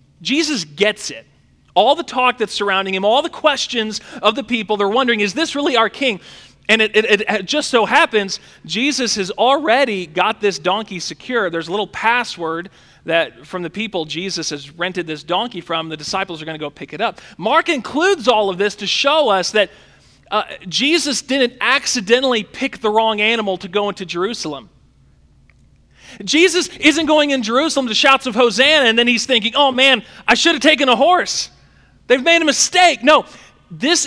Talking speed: 190 wpm